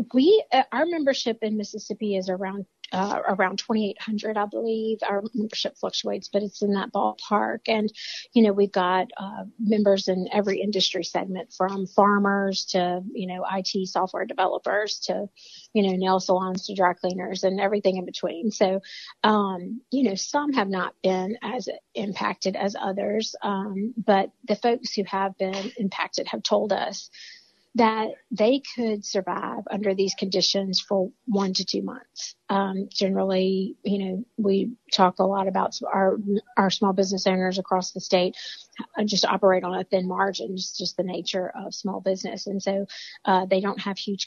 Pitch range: 190-215 Hz